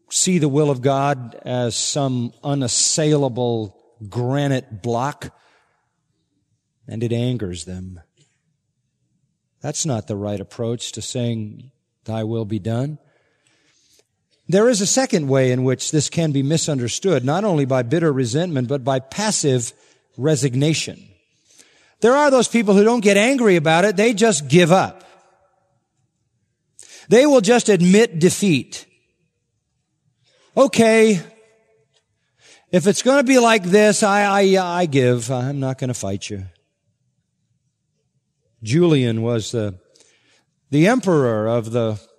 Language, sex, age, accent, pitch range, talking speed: English, male, 40-59, American, 125-175 Hz, 125 wpm